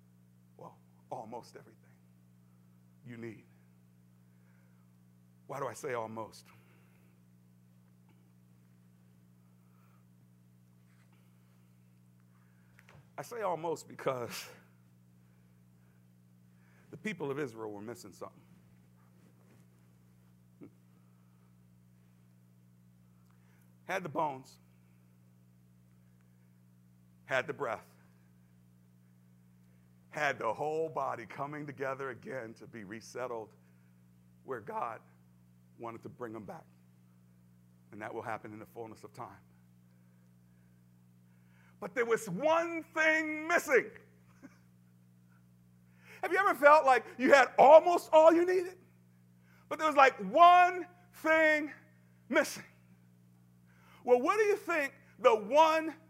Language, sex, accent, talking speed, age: English, male, American, 90 wpm, 60-79